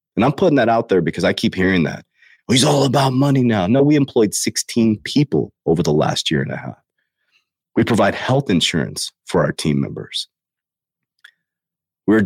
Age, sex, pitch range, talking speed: 30-49, male, 85-120 Hz, 185 wpm